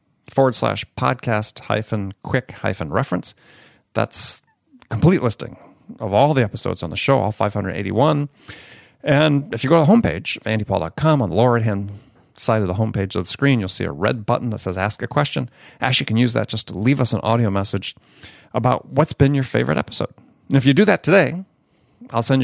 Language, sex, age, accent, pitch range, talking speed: English, male, 40-59, American, 105-140 Hz, 200 wpm